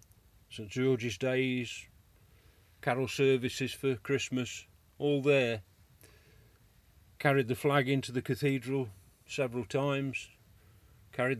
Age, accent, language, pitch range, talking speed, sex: 40-59, British, English, 105-135 Hz, 95 wpm, male